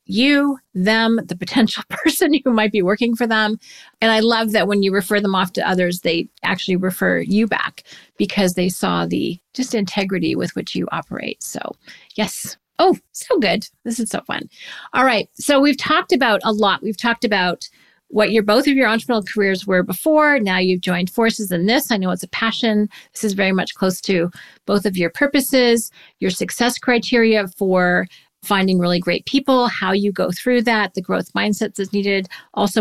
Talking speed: 195 wpm